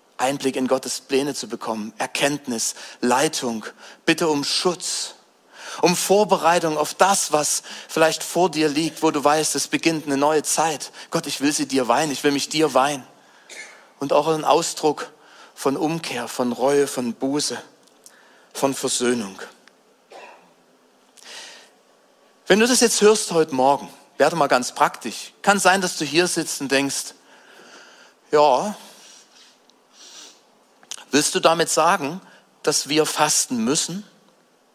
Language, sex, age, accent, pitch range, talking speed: German, male, 40-59, German, 140-175 Hz, 135 wpm